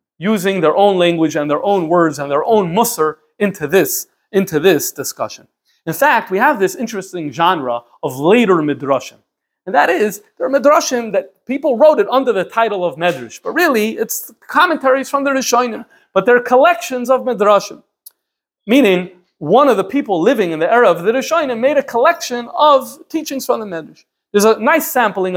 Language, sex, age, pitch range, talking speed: English, male, 30-49, 175-255 Hz, 180 wpm